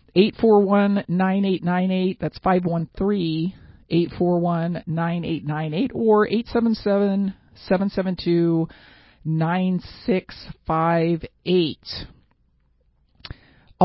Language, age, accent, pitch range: English, 40-59, American, 160-195 Hz